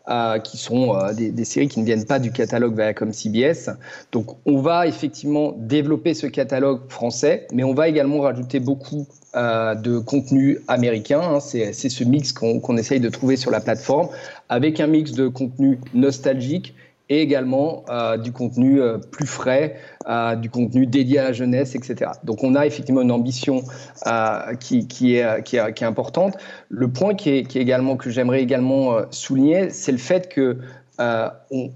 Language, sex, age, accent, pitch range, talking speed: French, male, 40-59, French, 120-140 Hz, 185 wpm